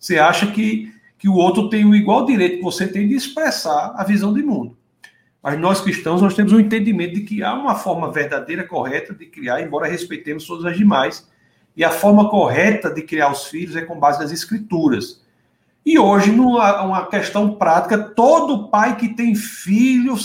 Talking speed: 185 wpm